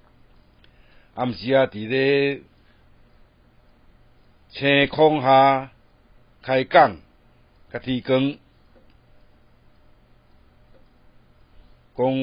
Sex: male